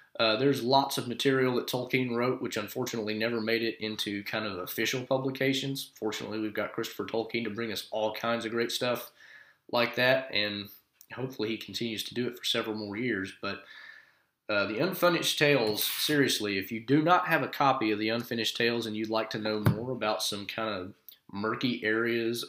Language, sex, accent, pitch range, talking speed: English, male, American, 105-125 Hz, 195 wpm